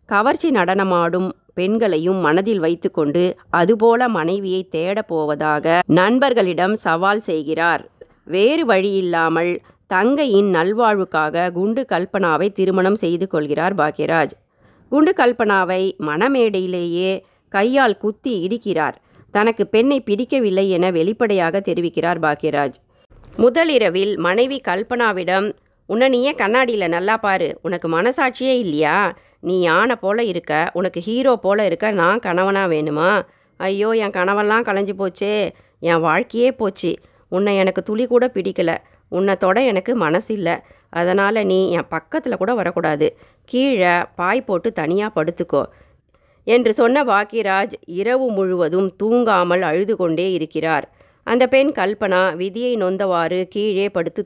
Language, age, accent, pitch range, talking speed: Tamil, 30-49, native, 175-220 Hz, 110 wpm